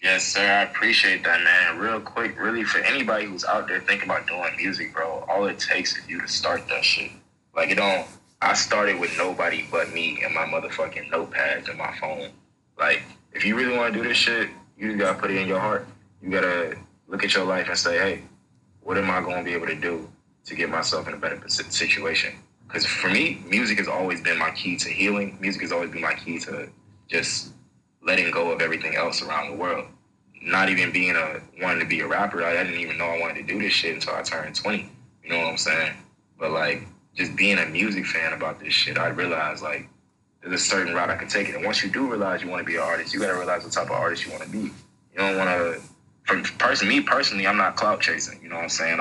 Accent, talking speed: American, 250 wpm